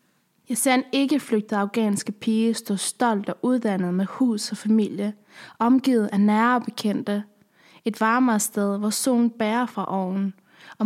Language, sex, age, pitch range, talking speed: Danish, female, 20-39, 200-235 Hz, 150 wpm